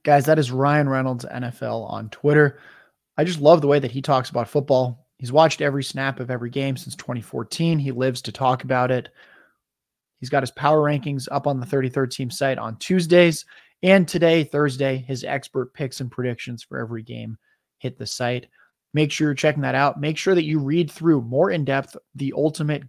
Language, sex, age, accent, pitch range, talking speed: English, male, 20-39, American, 125-155 Hz, 200 wpm